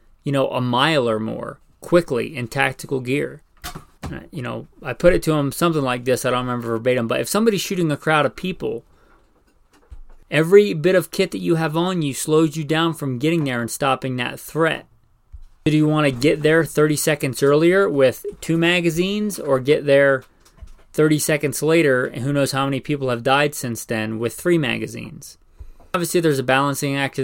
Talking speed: 195 wpm